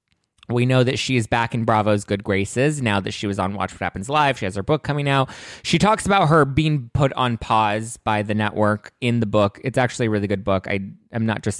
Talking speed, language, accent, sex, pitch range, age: 255 wpm, English, American, male, 105-135 Hz, 20-39